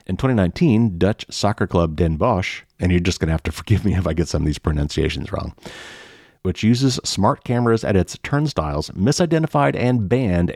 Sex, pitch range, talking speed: male, 85-115 Hz, 195 wpm